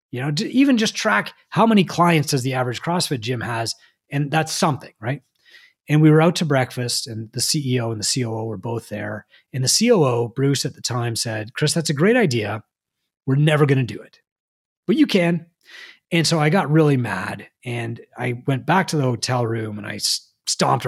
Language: English